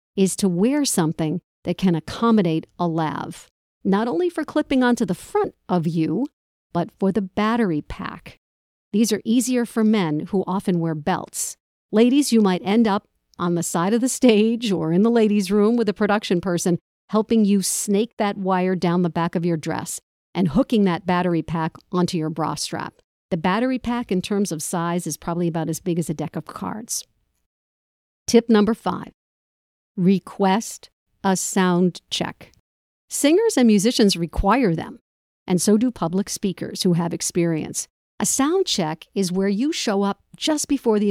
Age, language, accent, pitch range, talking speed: 50-69, English, American, 175-230 Hz, 175 wpm